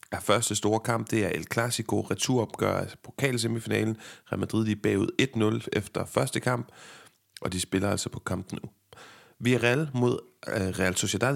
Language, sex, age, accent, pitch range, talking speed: Danish, male, 30-49, native, 100-120 Hz, 170 wpm